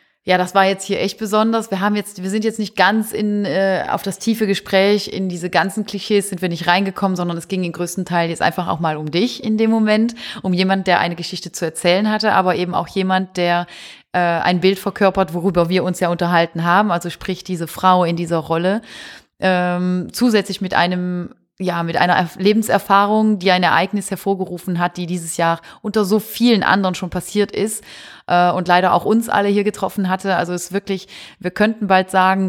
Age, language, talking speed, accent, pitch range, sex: 30-49, German, 210 wpm, German, 175-205 Hz, female